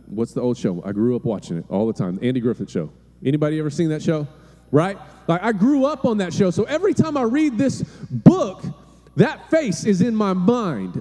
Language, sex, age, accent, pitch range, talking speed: English, male, 30-49, American, 150-235 Hz, 225 wpm